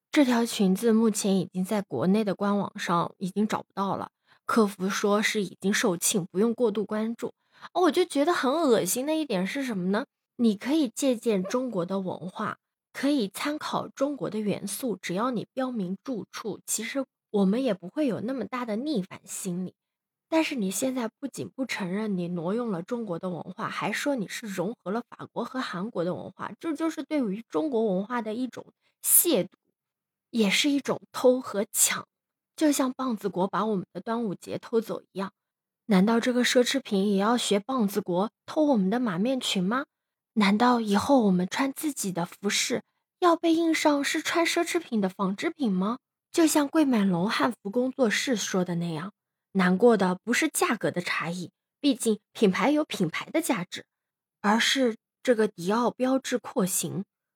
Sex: female